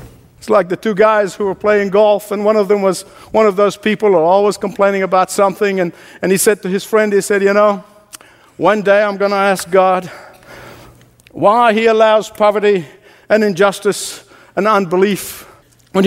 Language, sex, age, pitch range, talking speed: English, male, 60-79, 165-240 Hz, 185 wpm